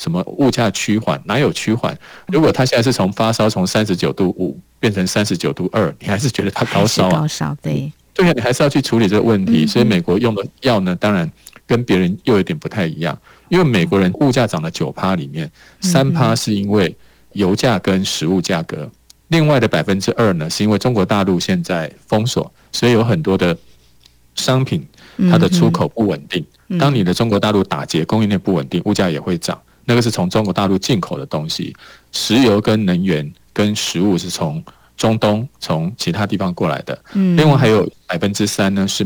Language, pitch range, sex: Chinese, 95-120 Hz, male